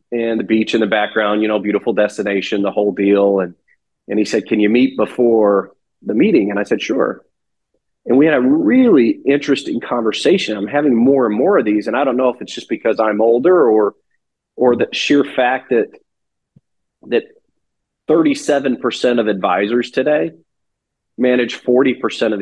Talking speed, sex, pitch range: 175 wpm, male, 110-150 Hz